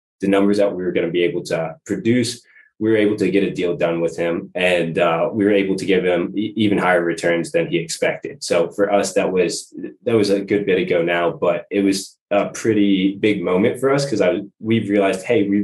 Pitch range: 90-100 Hz